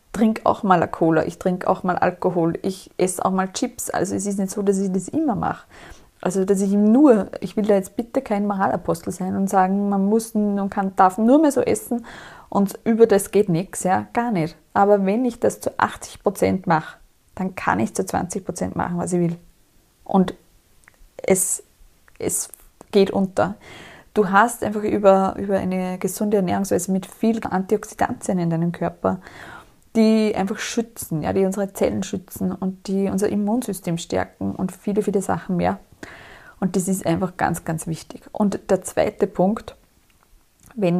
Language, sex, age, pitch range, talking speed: German, female, 20-39, 180-215 Hz, 180 wpm